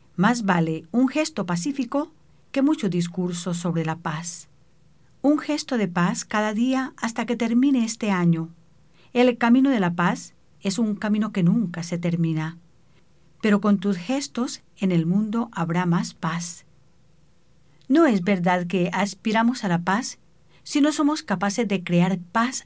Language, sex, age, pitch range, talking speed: English, female, 50-69, 170-240 Hz, 155 wpm